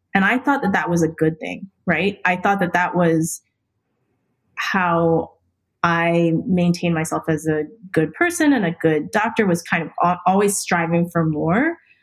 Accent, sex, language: American, female, English